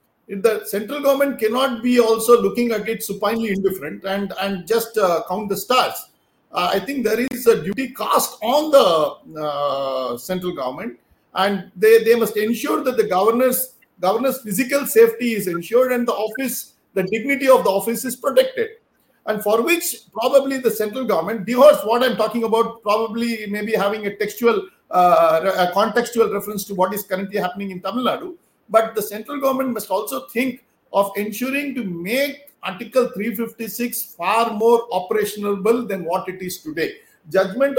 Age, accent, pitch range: 50-69, Indian, 195-240 Hz